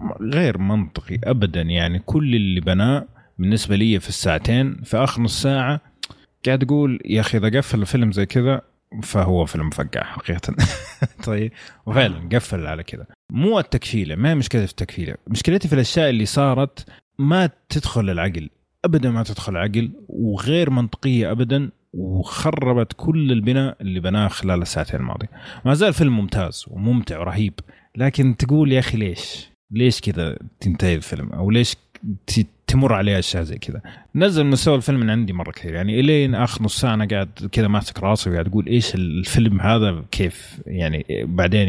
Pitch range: 90-125 Hz